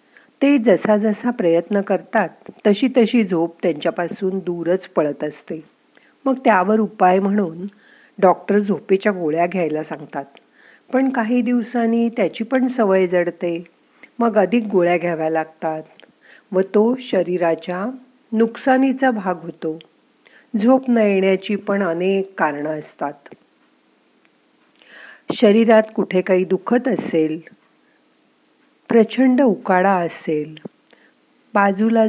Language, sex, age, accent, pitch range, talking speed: Marathi, female, 50-69, native, 180-235 Hz, 80 wpm